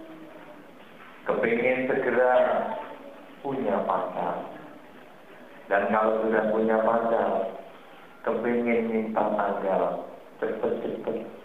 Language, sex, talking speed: Indonesian, male, 70 wpm